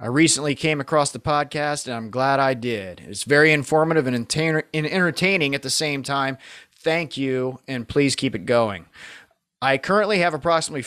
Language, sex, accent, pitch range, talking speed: English, male, American, 125-155 Hz, 170 wpm